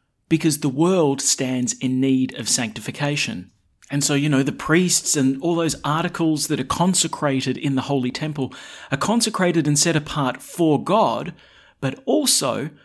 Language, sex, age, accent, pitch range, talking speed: English, male, 30-49, Australian, 115-150 Hz, 160 wpm